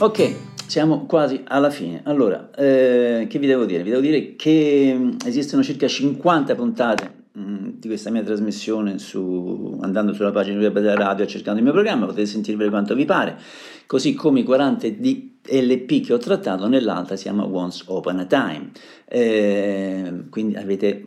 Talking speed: 165 wpm